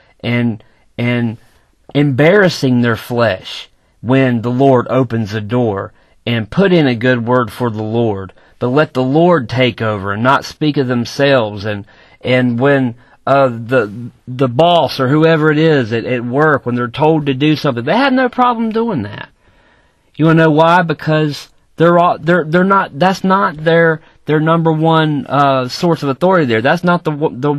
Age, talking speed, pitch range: 40-59, 180 wpm, 125-170 Hz